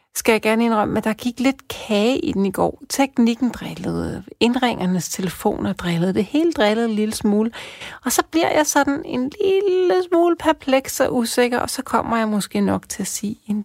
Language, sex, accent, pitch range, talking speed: Danish, female, native, 195-250 Hz, 200 wpm